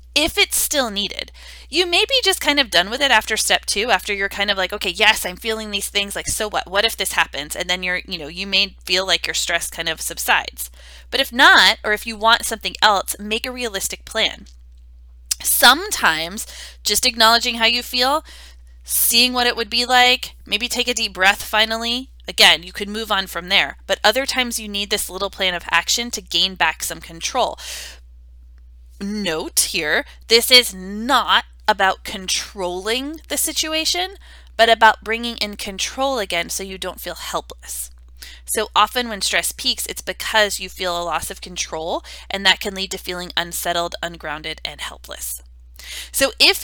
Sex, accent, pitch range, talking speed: female, American, 160-230 Hz, 190 wpm